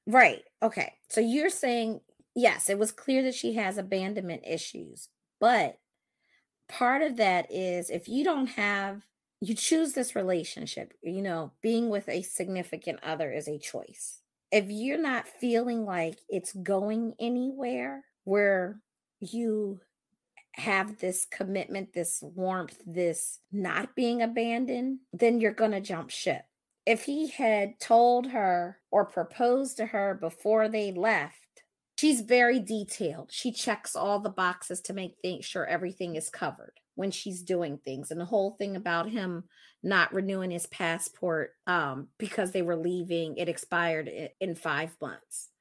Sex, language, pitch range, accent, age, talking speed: female, English, 175-225 Hz, American, 30-49, 145 wpm